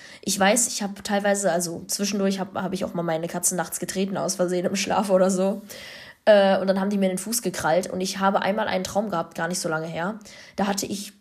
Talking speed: 245 wpm